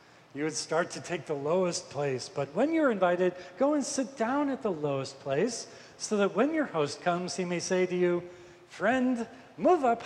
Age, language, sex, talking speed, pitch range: 40-59, English, male, 205 wpm, 150-200 Hz